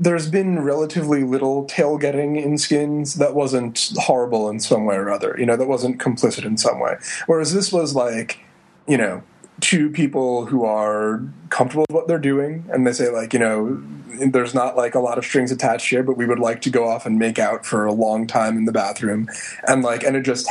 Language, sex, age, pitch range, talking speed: English, male, 30-49, 115-155 Hz, 220 wpm